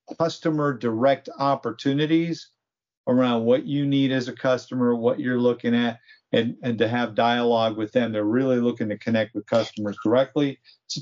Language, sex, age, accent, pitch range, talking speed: English, male, 50-69, American, 120-155 Hz, 165 wpm